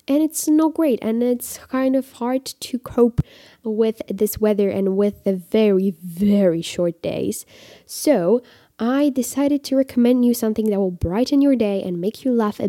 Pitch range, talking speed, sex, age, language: 185-245 Hz, 180 wpm, female, 10-29, English